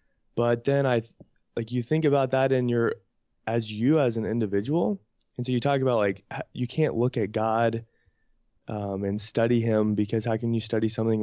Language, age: English, 20-39